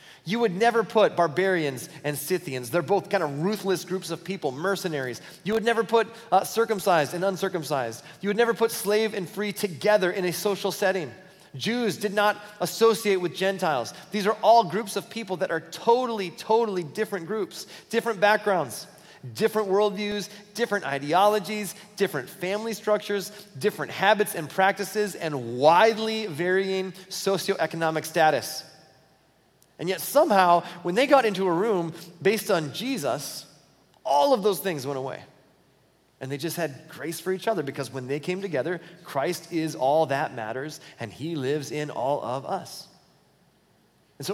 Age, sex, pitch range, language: 30-49, male, 155-210 Hz, English